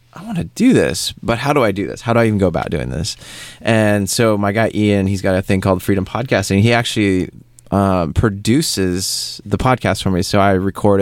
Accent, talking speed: American, 230 wpm